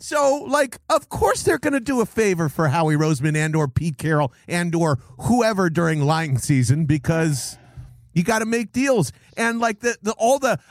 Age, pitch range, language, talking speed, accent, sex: 40-59, 140-210 Hz, English, 195 wpm, American, male